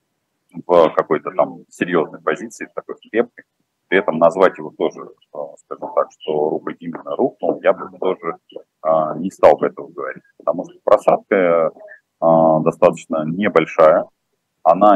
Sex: male